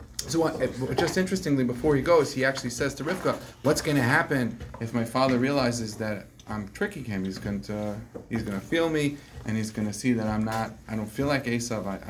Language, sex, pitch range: English, male, 115-145 Hz